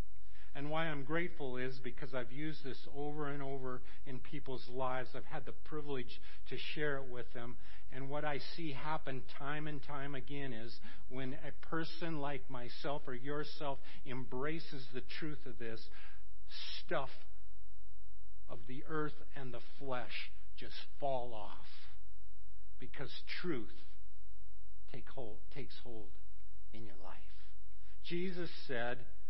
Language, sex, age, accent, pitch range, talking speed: English, male, 50-69, American, 95-140 Hz, 135 wpm